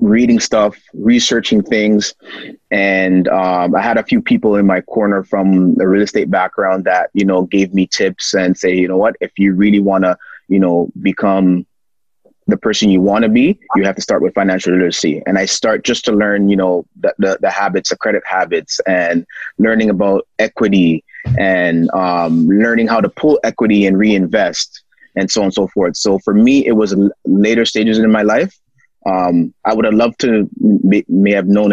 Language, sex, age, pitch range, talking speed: English, male, 20-39, 95-115 Hz, 195 wpm